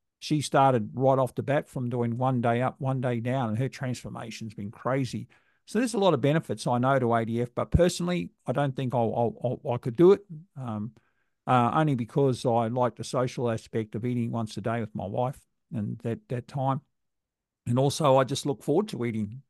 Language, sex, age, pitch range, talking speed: English, male, 50-69, 120-145 Hz, 205 wpm